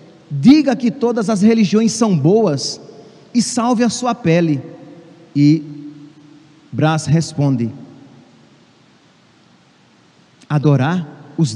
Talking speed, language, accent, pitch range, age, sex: 90 wpm, Portuguese, Brazilian, 150-200 Hz, 40-59, male